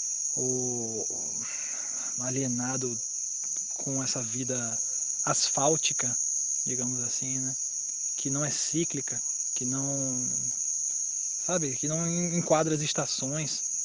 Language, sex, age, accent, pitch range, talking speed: Portuguese, male, 20-39, Brazilian, 130-160 Hz, 90 wpm